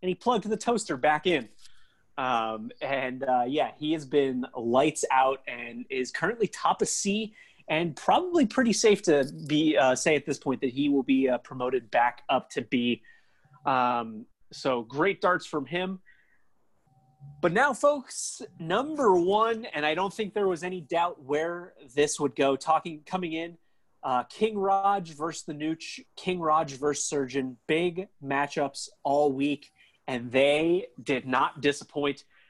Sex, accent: male, American